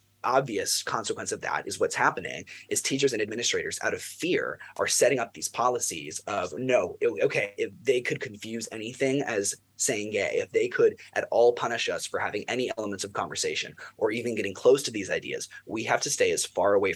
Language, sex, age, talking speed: English, male, 20-39, 200 wpm